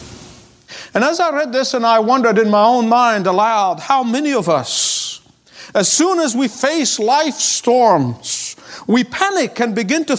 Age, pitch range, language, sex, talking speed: 50-69, 230-295 Hz, English, male, 170 wpm